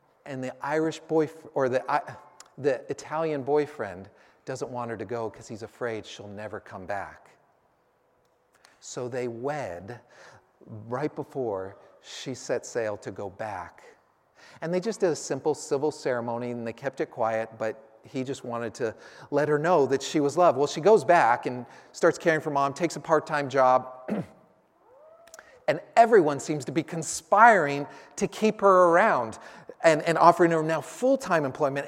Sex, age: male, 40-59